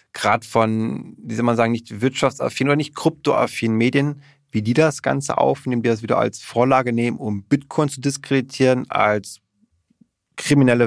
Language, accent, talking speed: German, German, 160 wpm